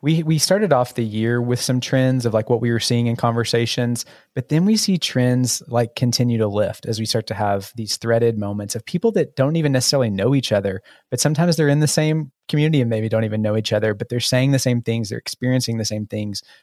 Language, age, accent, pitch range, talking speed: English, 20-39, American, 110-130 Hz, 245 wpm